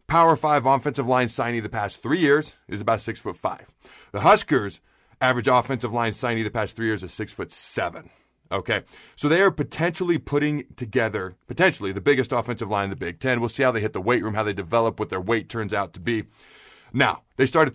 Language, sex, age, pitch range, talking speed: English, male, 40-59, 110-135 Hz, 220 wpm